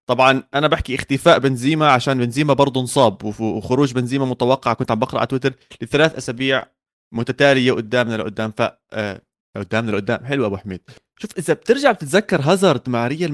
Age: 30-49